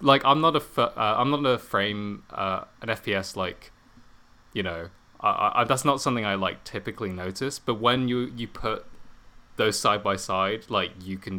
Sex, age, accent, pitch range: male, 20-39, British, 90-120 Hz